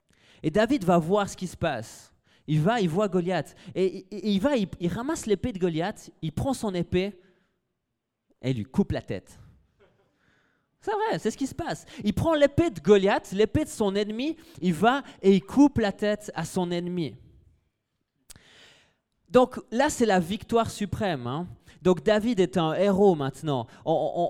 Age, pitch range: 30-49, 165-210 Hz